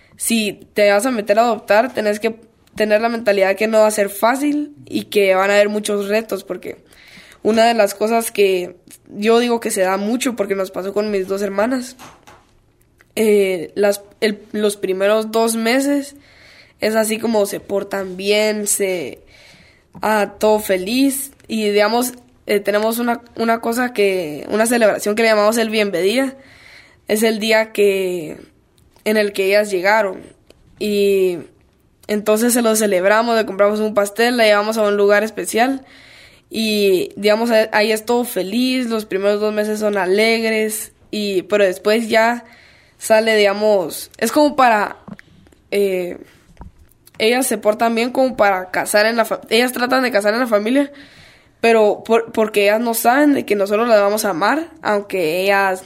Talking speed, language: 165 wpm, Spanish